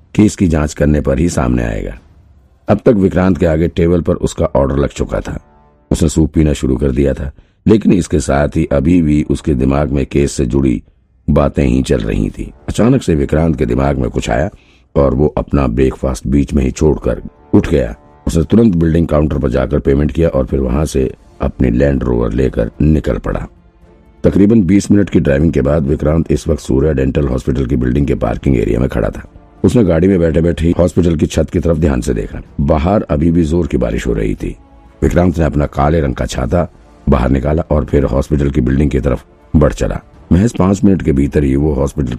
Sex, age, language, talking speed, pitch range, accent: male, 50-69, Hindi, 210 wpm, 70-85 Hz, native